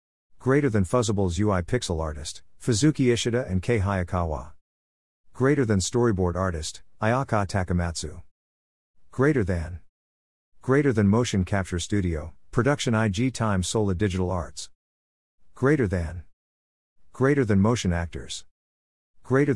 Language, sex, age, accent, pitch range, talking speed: English, male, 50-69, American, 75-115 Hz, 115 wpm